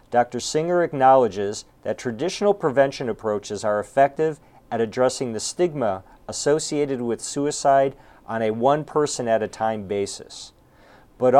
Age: 50-69